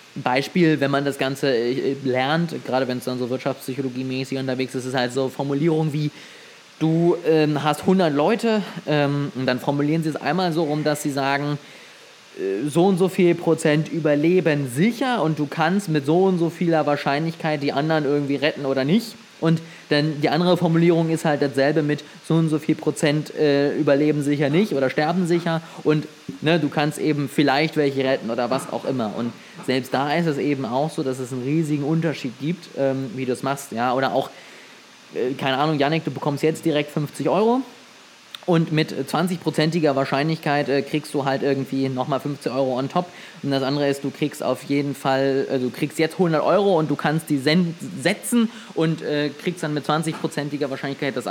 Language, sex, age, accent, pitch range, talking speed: German, male, 20-39, German, 140-165 Hz, 185 wpm